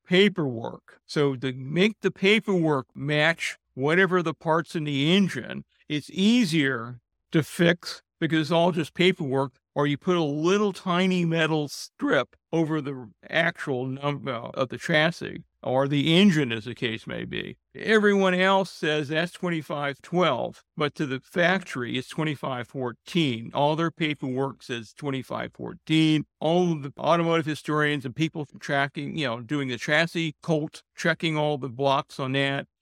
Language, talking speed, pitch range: English, 145 wpm, 140-175 Hz